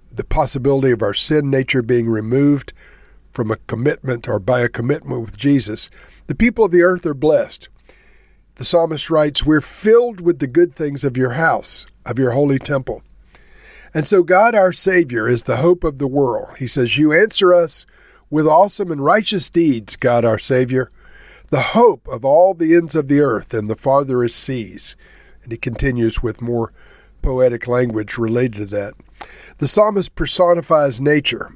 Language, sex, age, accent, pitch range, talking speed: English, male, 60-79, American, 120-165 Hz, 175 wpm